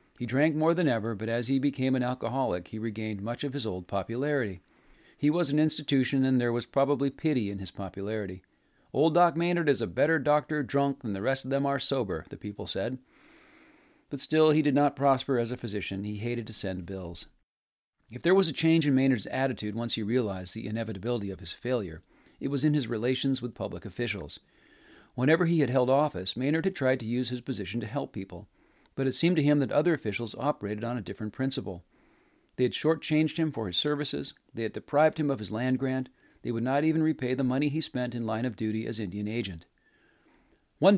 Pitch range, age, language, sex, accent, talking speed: 110-145 Hz, 40-59, English, male, American, 215 wpm